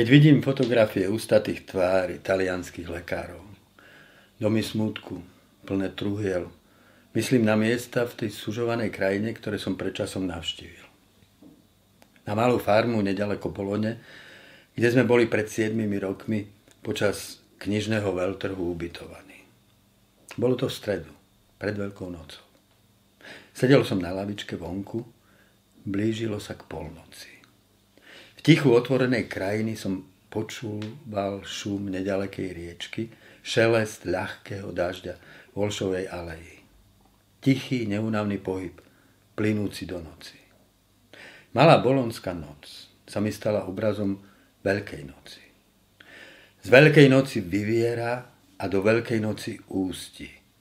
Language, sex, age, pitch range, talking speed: Slovak, male, 50-69, 95-110 Hz, 110 wpm